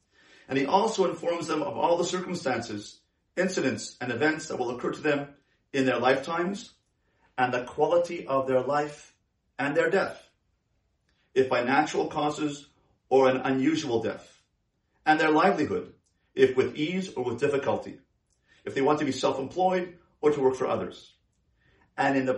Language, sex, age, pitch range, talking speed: English, male, 40-59, 130-170 Hz, 160 wpm